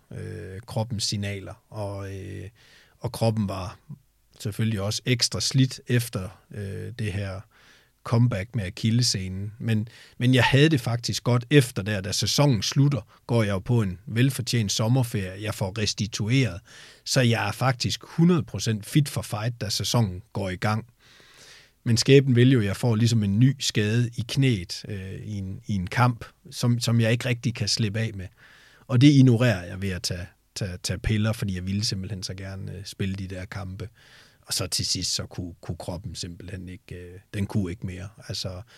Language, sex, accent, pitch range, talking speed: Danish, male, native, 95-120 Hz, 180 wpm